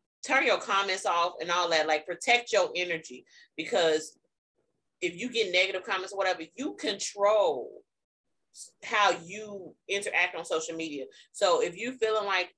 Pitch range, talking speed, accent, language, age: 175-245 Hz, 155 wpm, American, English, 30-49